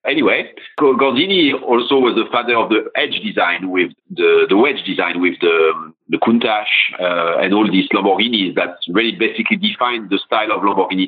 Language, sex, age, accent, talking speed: English, male, 50-69, French, 175 wpm